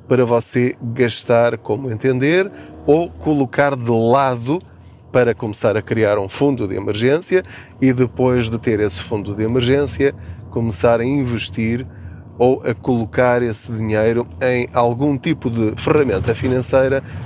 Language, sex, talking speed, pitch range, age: Portuguese, male, 135 wpm, 110-145 Hz, 20-39